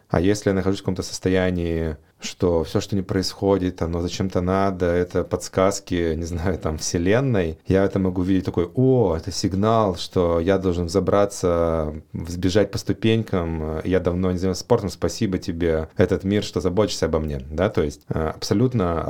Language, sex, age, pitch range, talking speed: Russian, male, 30-49, 80-100 Hz, 165 wpm